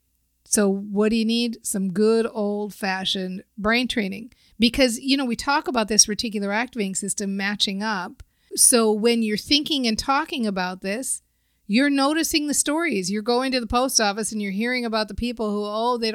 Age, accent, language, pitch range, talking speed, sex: 40-59, American, English, 215-275 Hz, 180 wpm, female